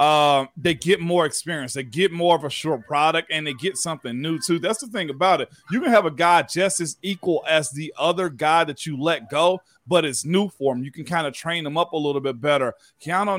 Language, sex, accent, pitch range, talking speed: English, male, American, 145-175 Hz, 250 wpm